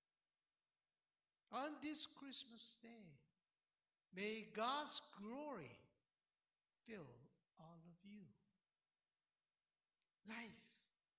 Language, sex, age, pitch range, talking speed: English, male, 60-79, 165-245 Hz, 65 wpm